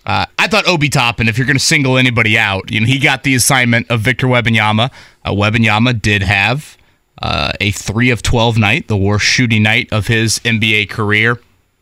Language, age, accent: English, 20-39, American